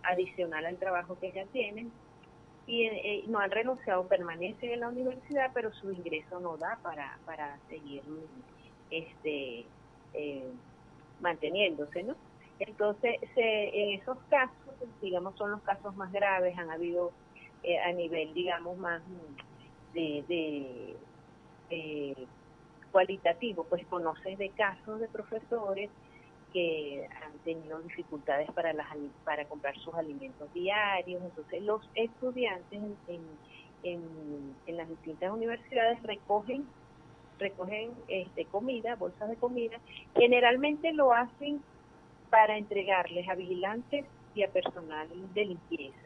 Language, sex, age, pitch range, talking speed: Spanish, female, 30-49, 165-215 Hz, 120 wpm